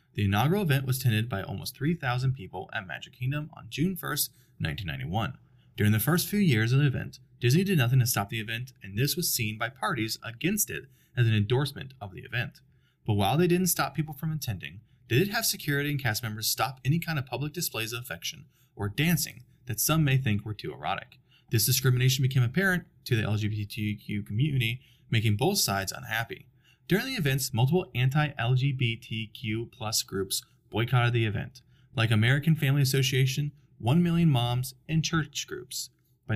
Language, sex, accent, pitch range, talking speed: English, male, American, 115-145 Hz, 180 wpm